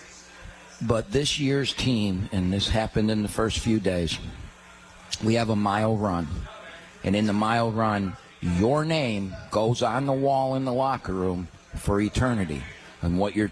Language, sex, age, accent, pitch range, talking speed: English, male, 50-69, American, 90-110 Hz, 165 wpm